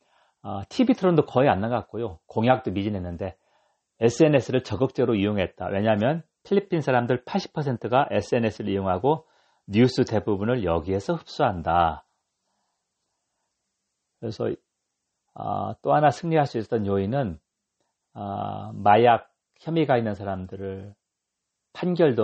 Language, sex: Korean, male